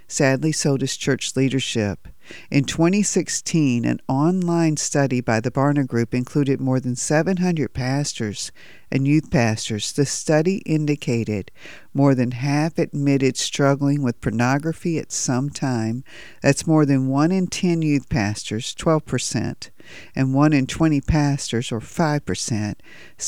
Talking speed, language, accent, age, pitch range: 130 wpm, English, American, 50-69, 125-160 Hz